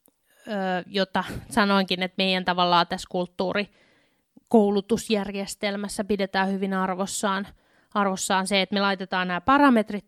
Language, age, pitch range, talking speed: Finnish, 20-39, 190-220 Hz, 100 wpm